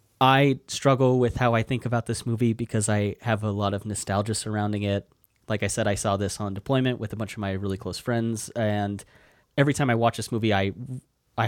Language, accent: English, American